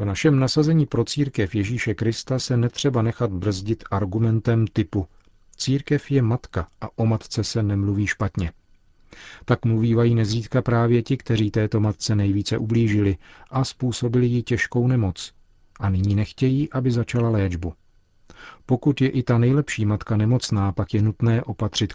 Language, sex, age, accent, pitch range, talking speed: Czech, male, 40-59, native, 100-120 Hz, 150 wpm